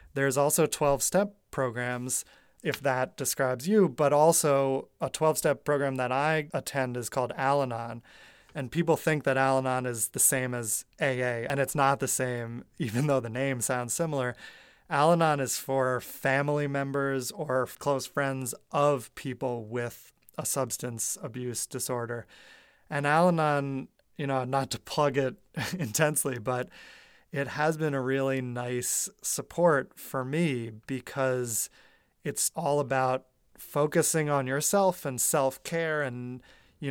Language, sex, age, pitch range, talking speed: English, male, 30-49, 125-145 Hz, 140 wpm